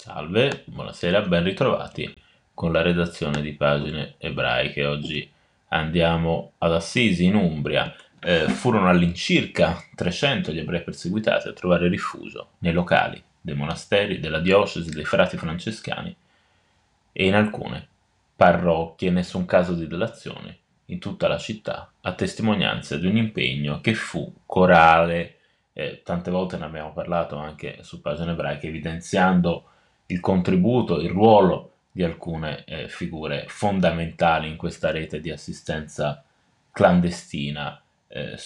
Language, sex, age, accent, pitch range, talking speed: Italian, male, 20-39, native, 75-90 Hz, 130 wpm